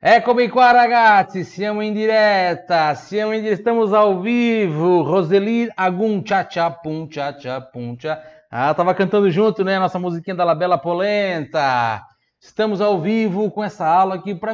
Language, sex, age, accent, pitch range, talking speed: Italian, male, 30-49, Brazilian, 145-190 Hz, 160 wpm